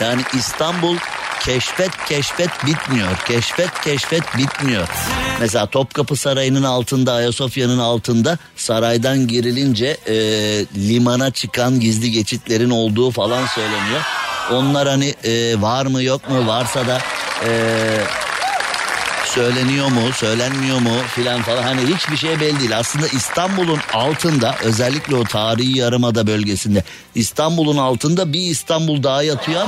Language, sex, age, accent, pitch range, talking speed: Turkish, male, 50-69, native, 115-150 Hz, 115 wpm